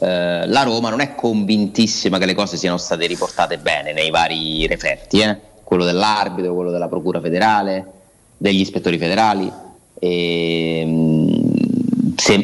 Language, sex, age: Italian, male, 30-49